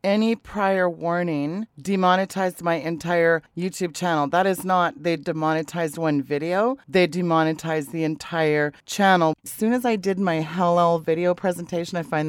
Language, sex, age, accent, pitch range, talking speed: English, female, 40-59, American, 160-190 Hz, 150 wpm